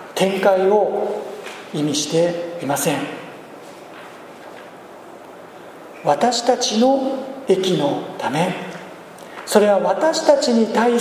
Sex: male